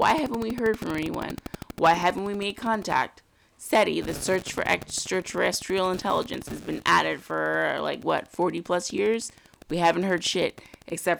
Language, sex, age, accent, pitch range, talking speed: English, female, 20-39, American, 170-210 Hz, 160 wpm